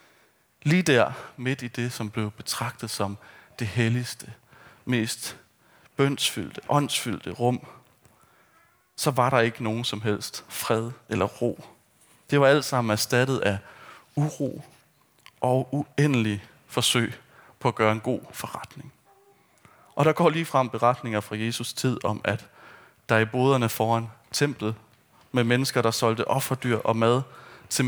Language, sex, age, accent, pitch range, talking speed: Danish, male, 30-49, native, 110-135 Hz, 140 wpm